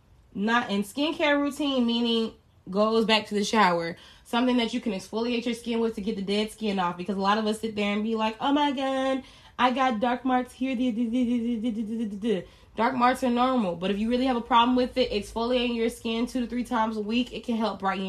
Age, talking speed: 20-39, 225 wpm